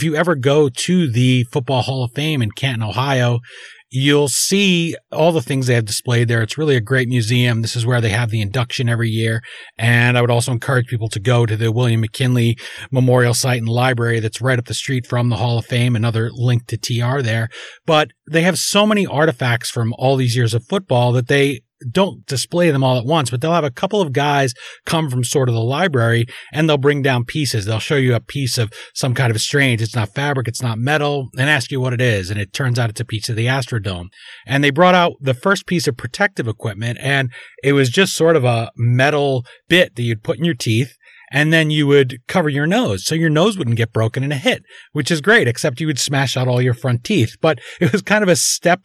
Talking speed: 245 wpm